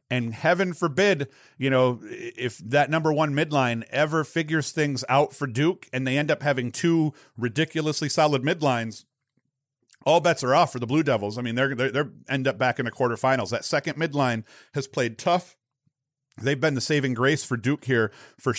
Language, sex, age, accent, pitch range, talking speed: English, male, 40-59, American, 125-145 Hz, 190 wpm